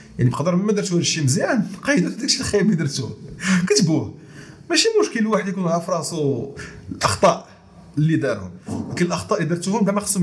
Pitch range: 140-205 Hz